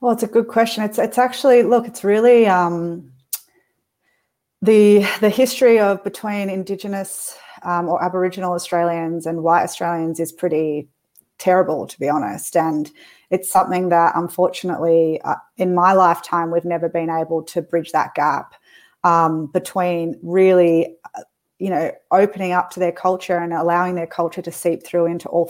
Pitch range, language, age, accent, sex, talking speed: 170-200 Hz, English, 30-49, Australian, female, 160 wpm